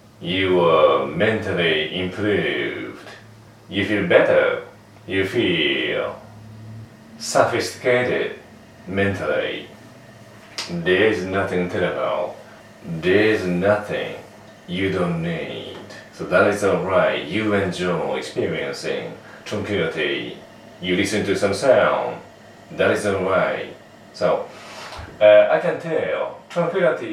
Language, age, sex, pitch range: Japanese, 40-59, male, 95-130 Hz